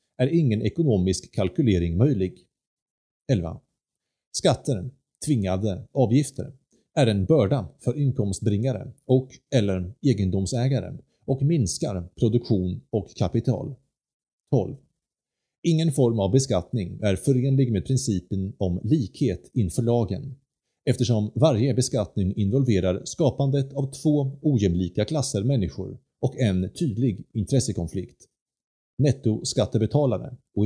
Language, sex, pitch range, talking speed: Swedish, male, 105-140 Hz, 100 wpm